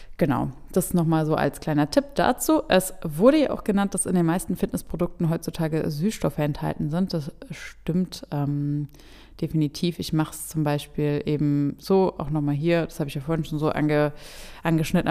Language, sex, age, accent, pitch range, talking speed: German, female, 20-39, German, 150-170 Hz, 175 wpm